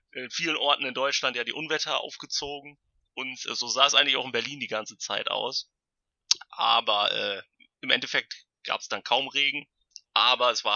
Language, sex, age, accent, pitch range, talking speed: German, male, 30-49, German, 120-155 Hz, 190 wpm